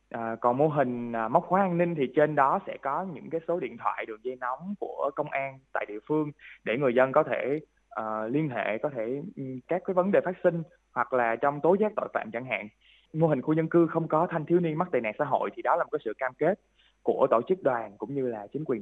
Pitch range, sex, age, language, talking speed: 120-160 Hz, male, 20-39, Vietnamese, 270 wpm